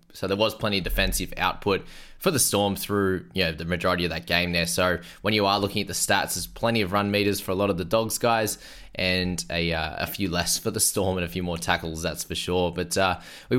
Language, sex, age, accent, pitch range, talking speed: English, male, 20-39, Australian, 90-120 Hz, 245 wpm